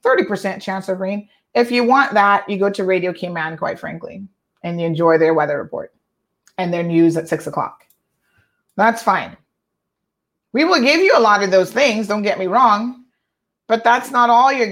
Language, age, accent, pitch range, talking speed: English, 30-49, American, 195-225 Hz, 190 wpm